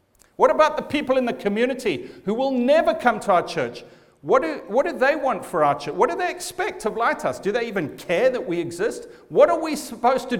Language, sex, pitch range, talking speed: English, male, 150-225 Hz, 230 wpm